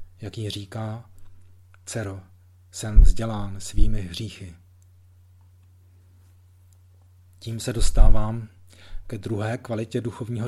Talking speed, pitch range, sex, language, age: 85 wpm, 90-110 Hz, male, Czech, 40-59